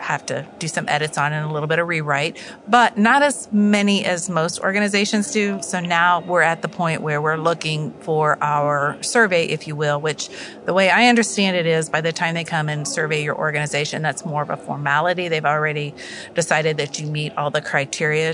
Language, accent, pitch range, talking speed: English, American, 150-185 Hz, 215 wpm